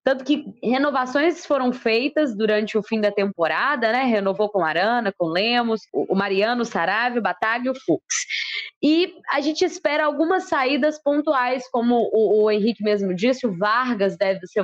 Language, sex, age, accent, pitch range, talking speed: Portuguese, female, 20-39, Brazilian, 205-265 Hz, 170 wpm